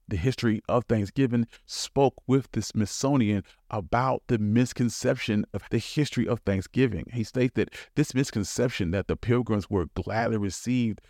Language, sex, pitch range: English, male, 110-140 Hz